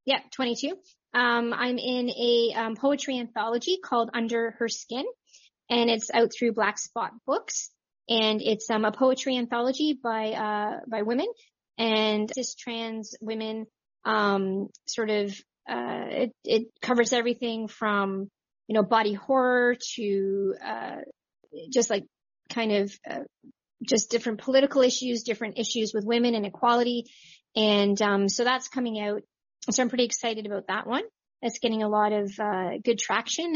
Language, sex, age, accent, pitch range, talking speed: English, female, 30-49, American, 210-245 Hz, 150 wpm